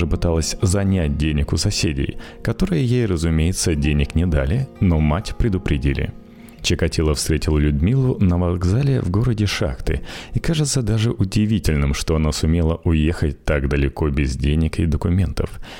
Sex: male